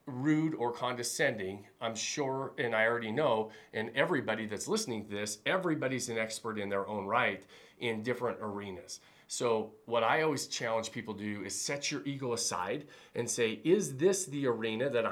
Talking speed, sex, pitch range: 180 wpm, male, 110-150 Hz